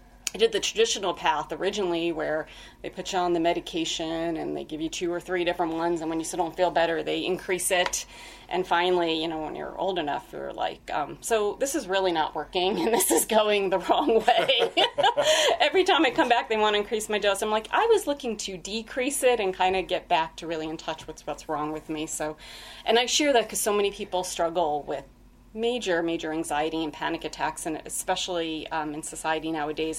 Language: English